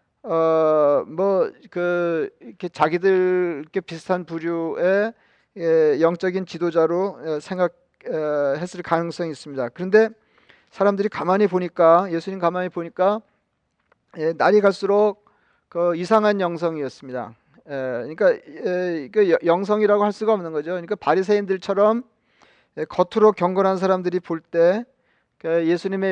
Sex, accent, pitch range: male, native, 165-200 Hz